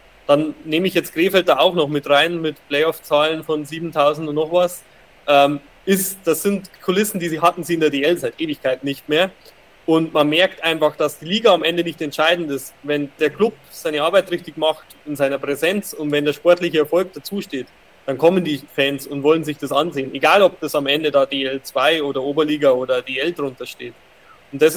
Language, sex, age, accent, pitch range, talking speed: German, male, 20-39, German, 145-170 Hz, 205 wpm